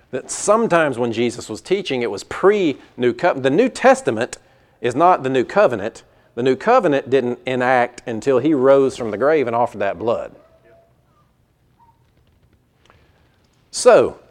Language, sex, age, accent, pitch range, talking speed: English, male, 40-59, American, 125-185 Hz, 145 wpm